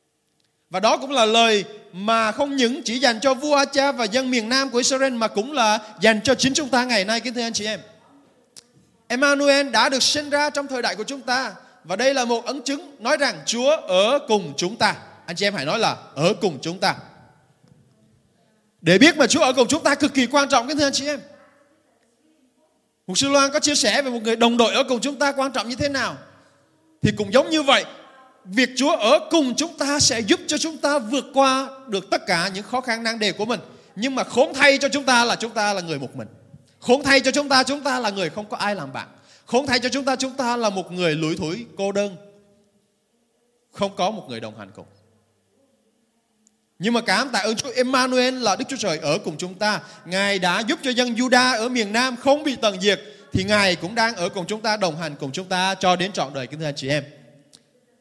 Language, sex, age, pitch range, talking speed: Vietnamese, male, 20-39, 200-270 Hz, 240 wpm